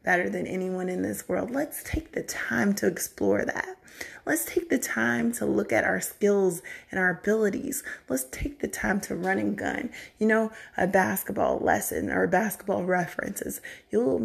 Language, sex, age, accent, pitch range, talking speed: English, female, 30-49, American, 185-260 Hz, 175 wpm